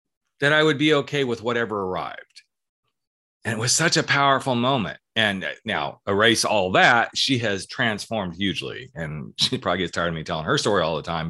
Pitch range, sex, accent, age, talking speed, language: 95-120 Hz, male, American, 40-59, 195 wpm, English